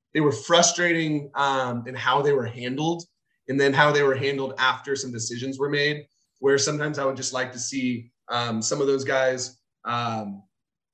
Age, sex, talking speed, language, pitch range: 30-49, male, 185 wpm, English, 130-160 Hz